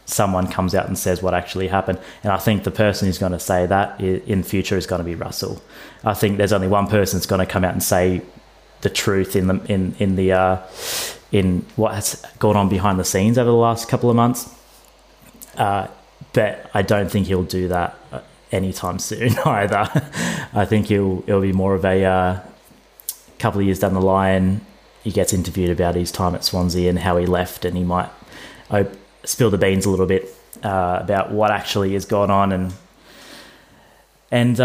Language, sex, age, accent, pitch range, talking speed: English, male, 20-39, Australian, 95-110 Hz, 205 wpm